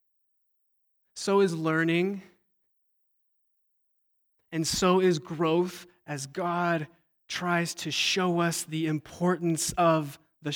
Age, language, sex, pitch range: 20-39, English, male, 155-195 Hz